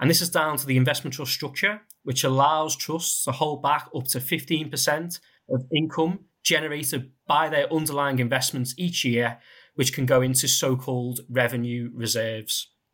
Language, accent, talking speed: English, British, 160 wpm